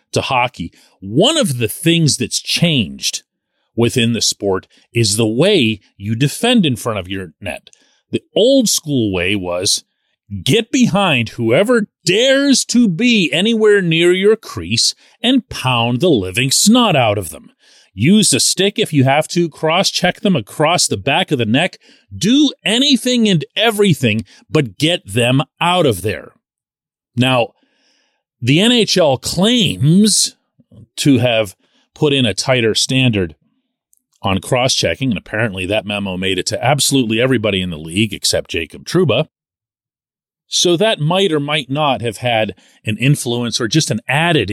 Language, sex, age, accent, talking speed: English, male, 40-59, American, 150 wpm